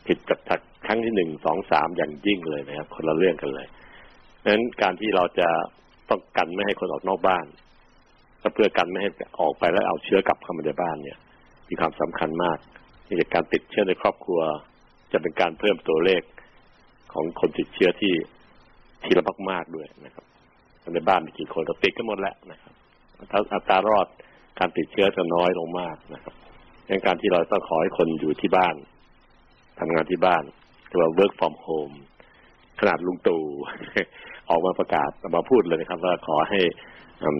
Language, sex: Thai, male